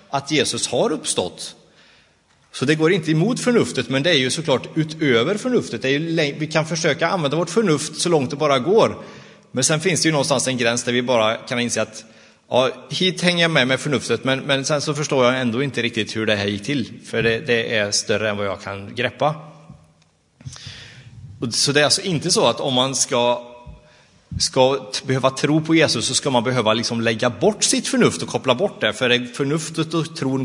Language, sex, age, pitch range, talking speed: Swedish, male, 30-49, 120-160 Hz, 215 wpm